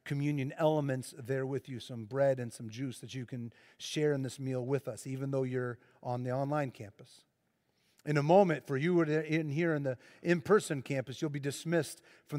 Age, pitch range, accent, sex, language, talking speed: 40-59, 130-160 Hz, American, male, English, 200 wpm